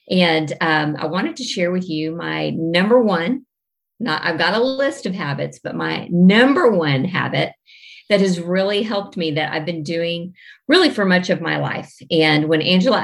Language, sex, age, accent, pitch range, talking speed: English, female, 50-69, American, 155-190 Hz, 190 wpm